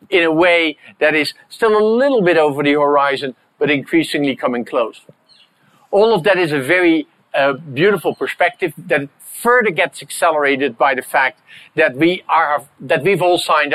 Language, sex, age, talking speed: English, male, 50-69, 160 wpm